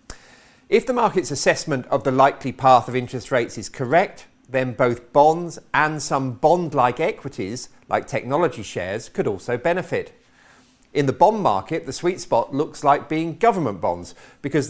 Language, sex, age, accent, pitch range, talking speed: English, male, 50-69, British, 115-155 Hz, 160 wpm